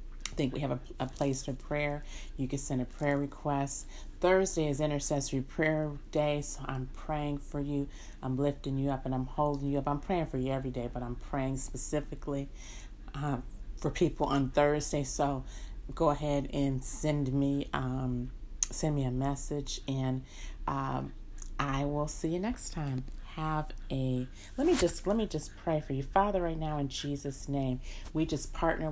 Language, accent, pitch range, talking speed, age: English, American, 130-150 Hz, 185 wpm, 40-59